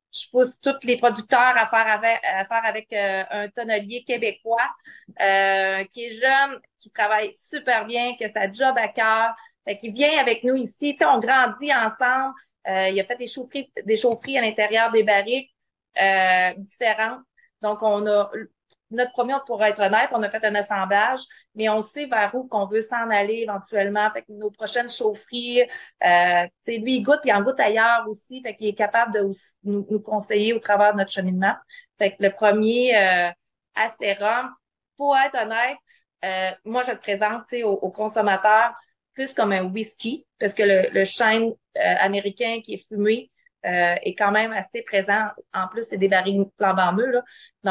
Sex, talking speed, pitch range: female, 180 wpm, 200-245 Hz